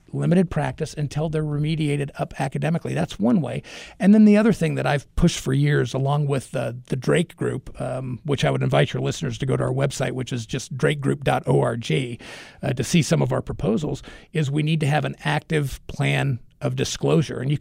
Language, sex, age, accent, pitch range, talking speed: English, male, 40-59, American, 130-155 Hz, 210 wpm